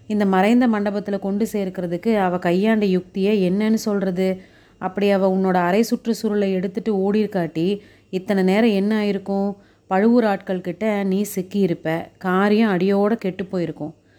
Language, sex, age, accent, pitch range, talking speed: Tamil, female, 30-49, native, 180-215 Hz, 130 wpm